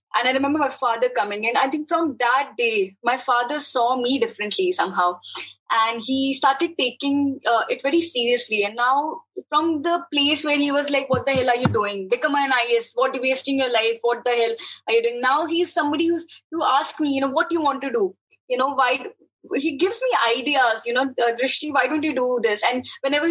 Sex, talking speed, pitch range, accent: female, 235 wpm, 230-295 Hz, Indian